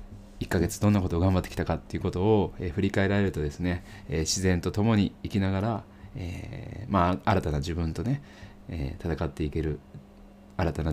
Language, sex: Japanese, male